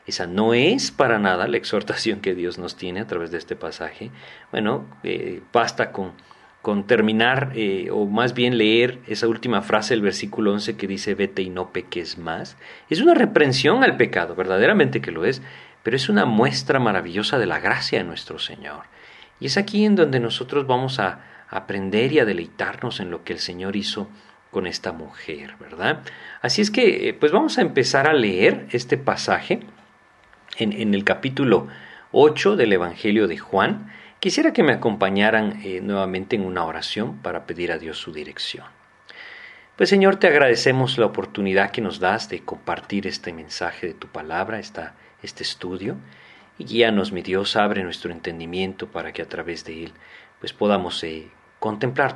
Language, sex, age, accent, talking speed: Spanish, male, 40-59, Mexican, 175 wpm